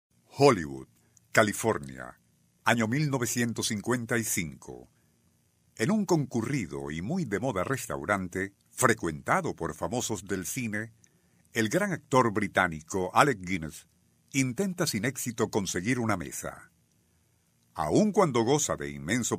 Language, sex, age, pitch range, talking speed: Spanish, male, 50-69, 90-135 Hz, 105 wpm